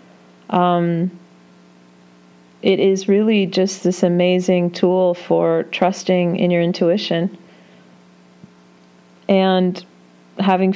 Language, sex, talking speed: English, female, 85 wpm